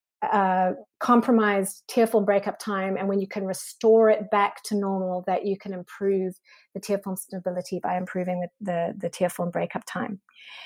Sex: female